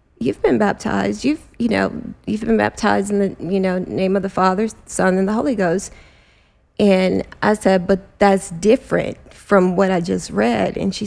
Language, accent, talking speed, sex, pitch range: English, American, 190 wpm, female, 180-200 Hz